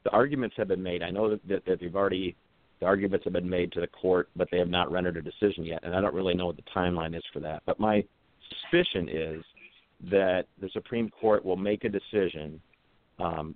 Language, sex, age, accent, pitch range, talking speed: English, male, 50-69, American, 85-100 Hz, 230 wpm